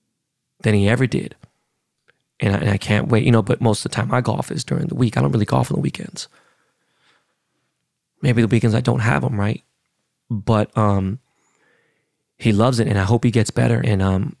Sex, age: male, 20-39